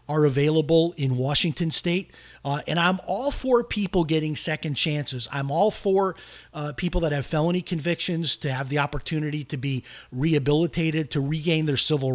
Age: 40-59